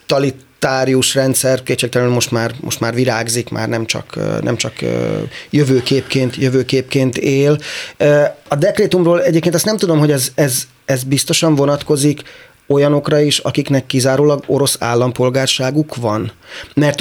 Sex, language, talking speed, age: male, Hungarian, 125 wpm, 30-49